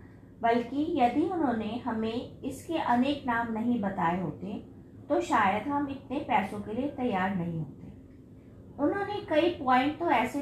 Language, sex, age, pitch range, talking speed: Hindi, female, 20-39, 220-290 Hz, 145 wpm